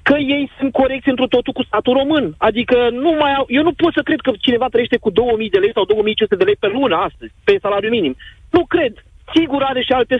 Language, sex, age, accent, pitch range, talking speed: Romanian, male, 40-59, native, 240-295 Hz, 240 wpm